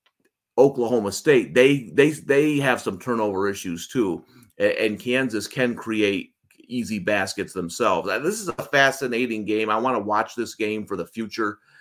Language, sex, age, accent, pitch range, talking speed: English, male, 30-49, American, 100-125 Hz, 160 wpm